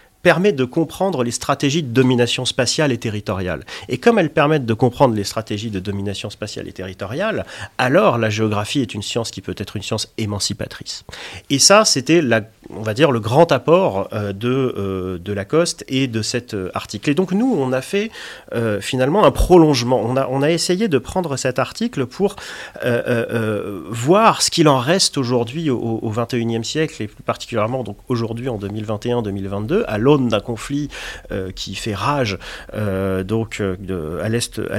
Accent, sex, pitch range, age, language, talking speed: French, male, 100-135 Hz, 40-59, French, 180 wpm